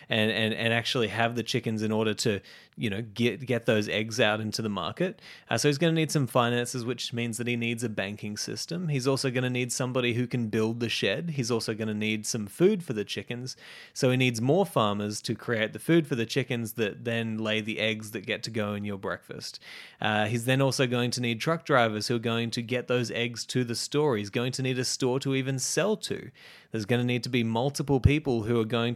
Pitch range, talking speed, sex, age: 115-135 Hz, 250 wpm, male, 20-39